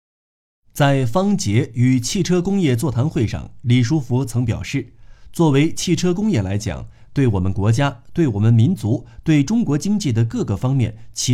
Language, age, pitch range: Chinese, 50-69, 110-150 Hz